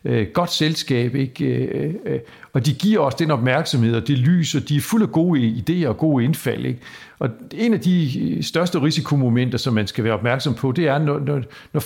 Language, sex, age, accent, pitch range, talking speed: English, male, 60-79, Danish, 120-165 Hz, 185 wpm